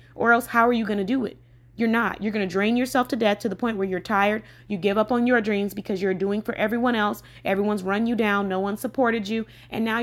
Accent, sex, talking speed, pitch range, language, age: American, female, 275 wpm, 180-235 Hz, English, 20-39